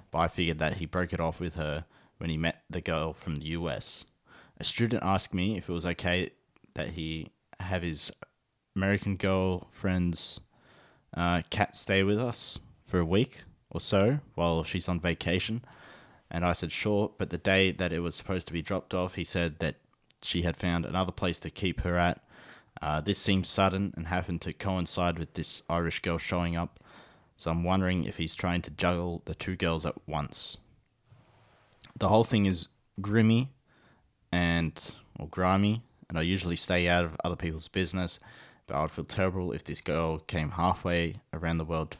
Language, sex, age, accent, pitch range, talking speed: English, male, 20-39, Australian, 85-95 Hz, 185 wpm